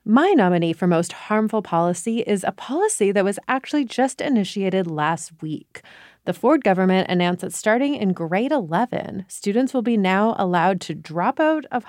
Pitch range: 175-225 Hz